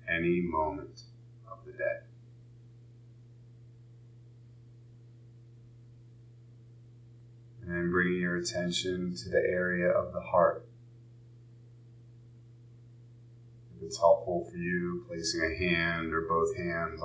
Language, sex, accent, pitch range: English, male, American, 100-120 Hz